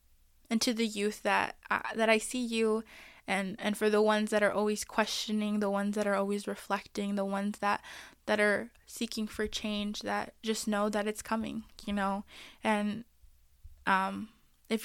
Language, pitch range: English, 200-220 Hz